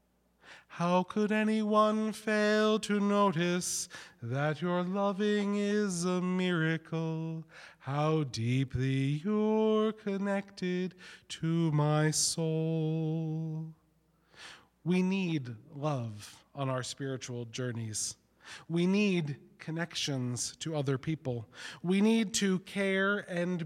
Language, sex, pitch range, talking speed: English, male, 135-190 Hz, 95 wpm